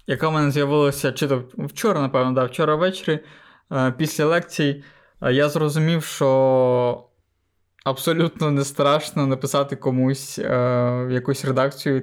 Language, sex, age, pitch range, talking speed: Ukrainian, male, 20-39, 130-150 Hz, 110 wpm